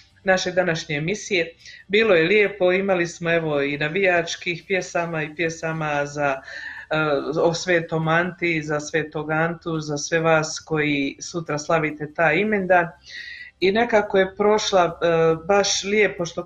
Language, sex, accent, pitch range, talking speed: Croatian, female, native, 165-200 Hz, 140 wpm